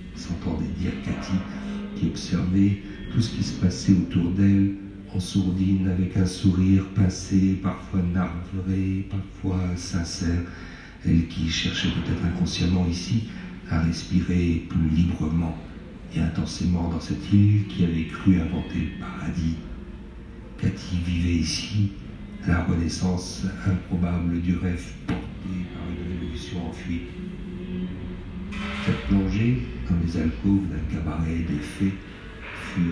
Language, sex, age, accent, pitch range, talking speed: French, male, 60-79, French, 85-95 Hz, 120 wpm